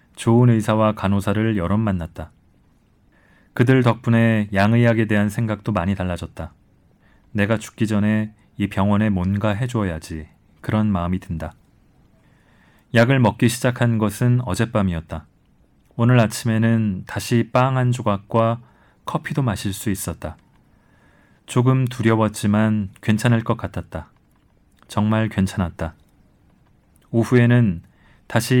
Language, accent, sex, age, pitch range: Korean, native, male, 30-49, 95-120 Hz